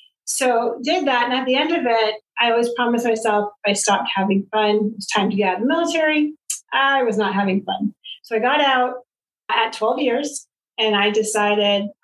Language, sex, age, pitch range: English, female, 40-59, 210-250 Hz